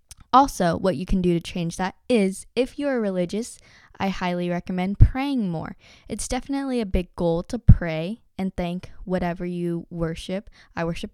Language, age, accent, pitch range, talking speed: English, 10-29, American, 175-210 Hz, 165 wpm